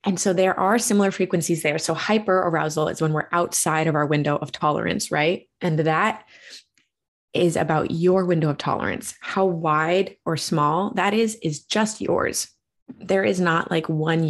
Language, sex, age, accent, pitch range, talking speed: English, female, 20-39, American, 150-180 Hz, 175 wpm